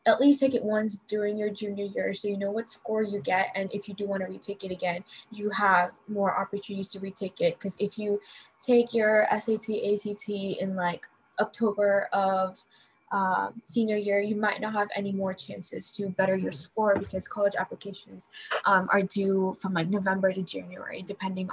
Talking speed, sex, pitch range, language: 190 wpm, female, 190-215 Hz, English